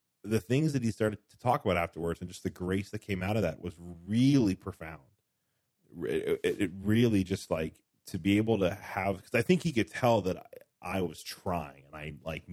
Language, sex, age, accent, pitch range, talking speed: English, male, 30-49, American, 85-105 Hz, 220 wpm